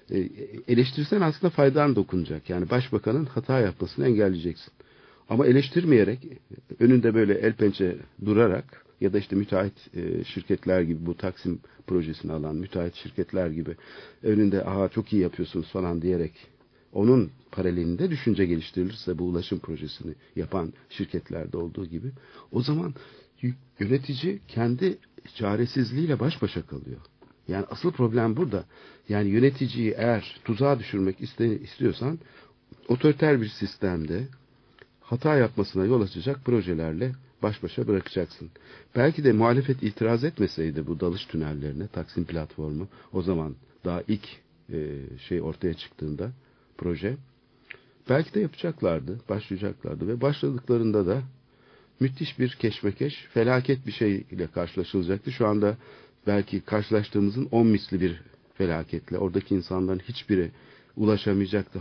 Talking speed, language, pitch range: 115 wpm, Turkish, 90-125 Hz